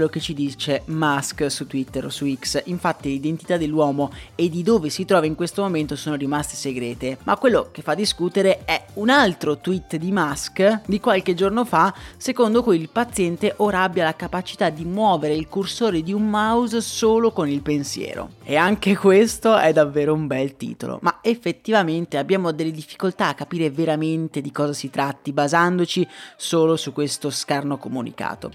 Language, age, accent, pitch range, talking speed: Italian, 30-49, native, 145-200 Hz, 175 wpm